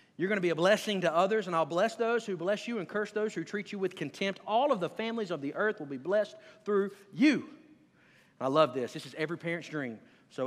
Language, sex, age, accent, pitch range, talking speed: English, male, 40-59, American, 175-235 Hz, 250 wpm